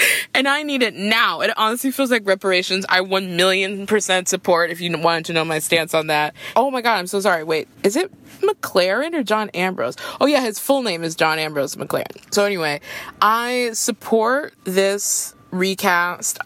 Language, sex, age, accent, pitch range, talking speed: English, female, 20-39, American, 170-205 Hz, 190 wpm